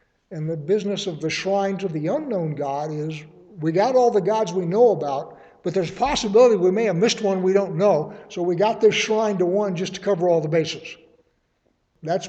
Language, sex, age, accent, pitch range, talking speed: English, male, 60-79, American, 155-195 Hz, 220 wpm